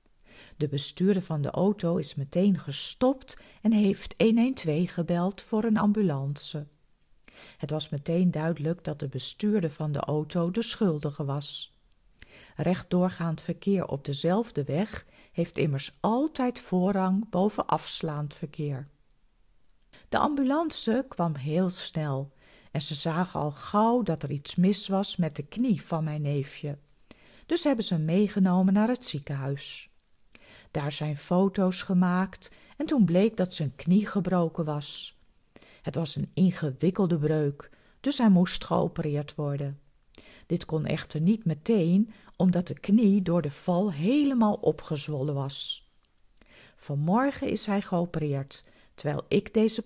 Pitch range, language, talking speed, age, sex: 150-200 Hz, Dutch, 135 wpm, 50-69, female